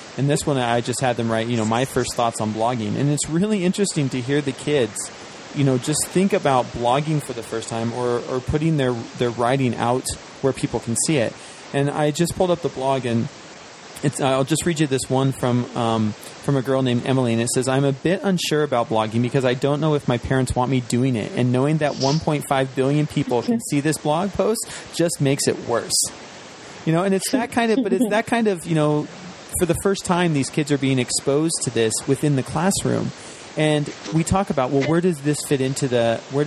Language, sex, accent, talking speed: English, male, American, 235 wpm